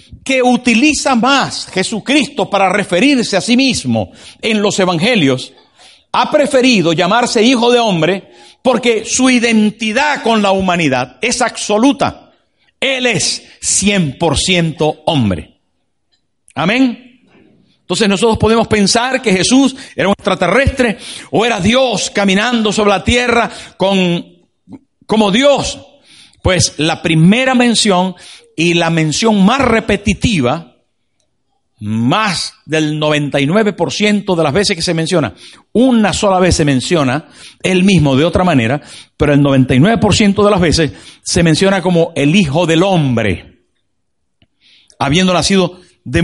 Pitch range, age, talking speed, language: 150-225 Hz, 60-79, 120 wpm, Spanish